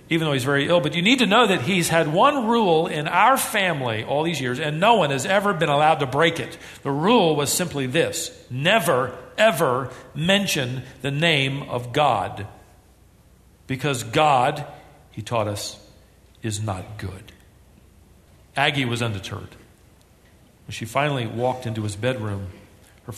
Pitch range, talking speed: 105-145 Hz, 160 wpm